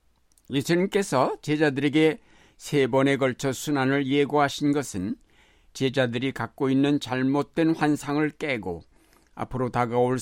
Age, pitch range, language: 60-79, 115-145 Hz, Korean